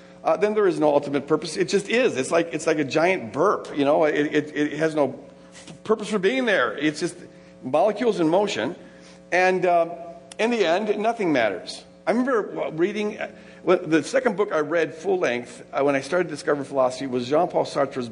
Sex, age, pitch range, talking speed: male, 50-69, 140-200 Hz, 210 wpm